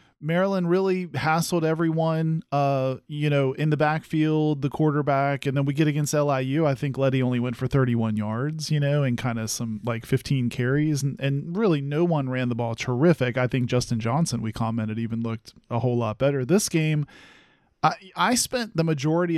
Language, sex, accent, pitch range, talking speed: English, male, American, 135-170 Hz, 195 wpm